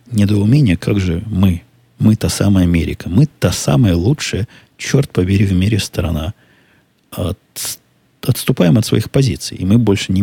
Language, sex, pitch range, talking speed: Russian, male, 90-120 Hz, 145 wpm